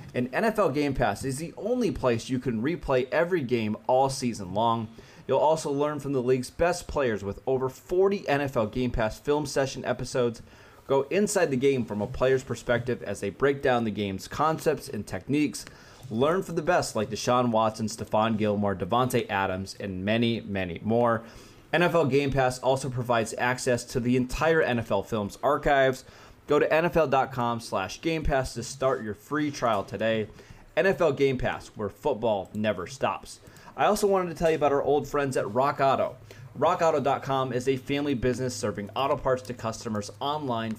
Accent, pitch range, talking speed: American, 110-140 Hz, 175 wpm